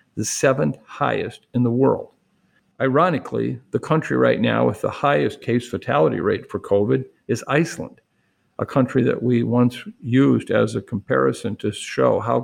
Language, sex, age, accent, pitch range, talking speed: English, male, 50-69, American, 110-130 Hz, 160 wpm